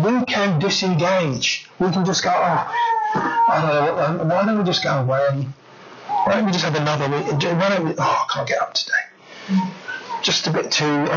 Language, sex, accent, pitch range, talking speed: English, male, British, 165-230 Hz, 205 wpm